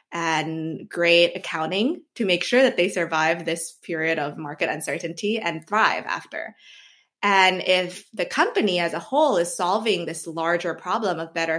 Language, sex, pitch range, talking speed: English, female, 165-225 Hz, 160 wpm